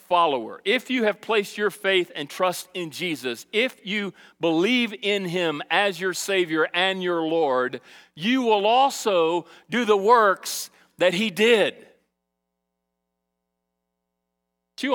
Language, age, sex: English, 40-59, male